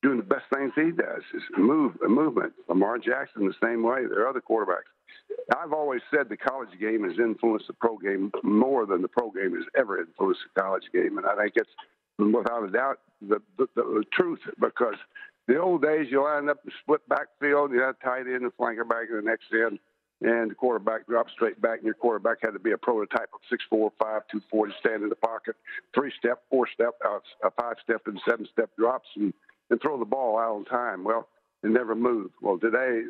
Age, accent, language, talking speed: 60-79, American, English, 215 wpm